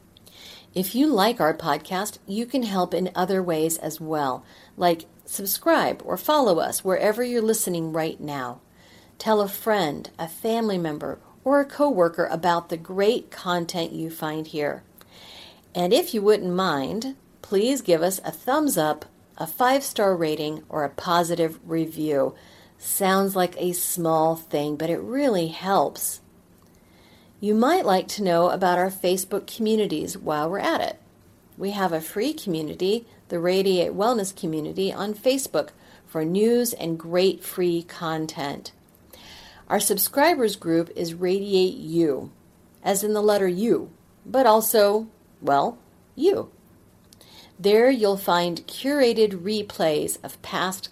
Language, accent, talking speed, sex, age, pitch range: English, American, 140 wpm, female, 50-69, 165-210 Hz